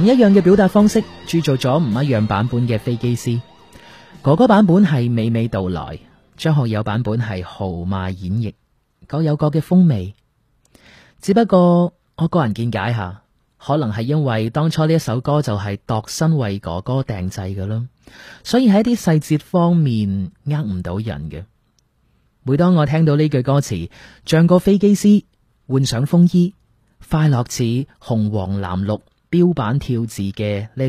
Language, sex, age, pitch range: Chinese, male, 30-49, 105-160 Hz